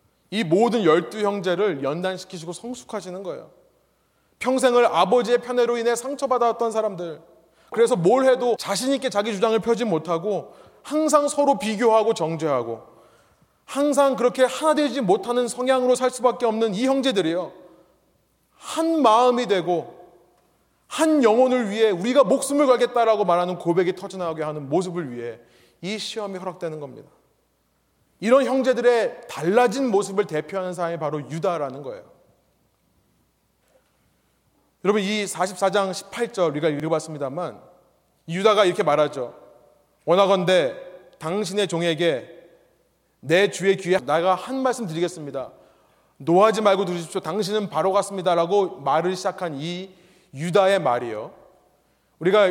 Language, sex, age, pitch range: Korean, male, 30-49, 175-240 Hz